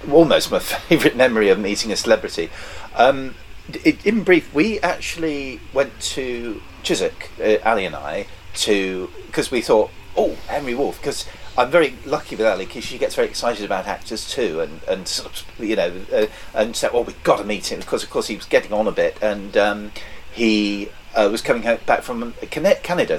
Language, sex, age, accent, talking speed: English, male, 40-59, British, 185 wpm